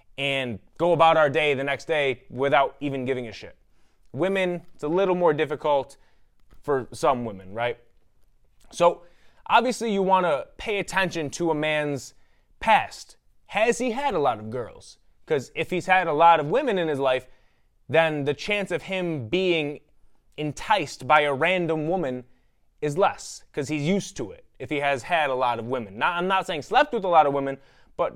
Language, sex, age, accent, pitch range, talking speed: English, male, 20-39, American, 135-180 Hz, 190 wpm